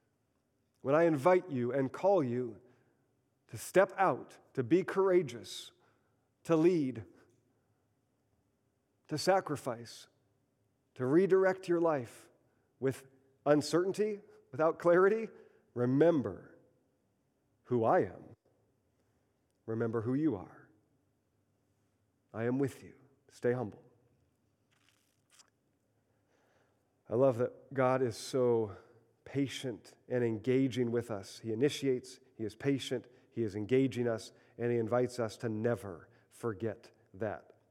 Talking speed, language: 105 wpm, English